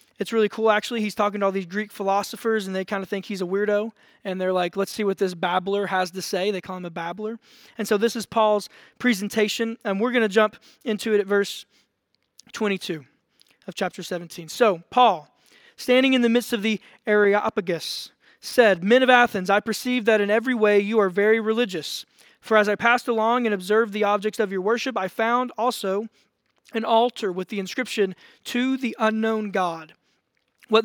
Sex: male